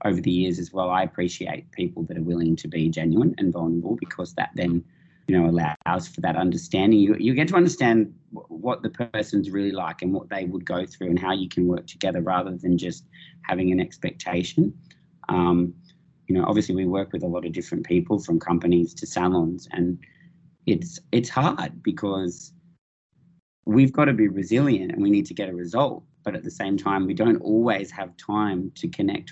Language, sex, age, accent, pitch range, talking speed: English, male, 20-39, Australian, 90-115 Hz, 205 wpm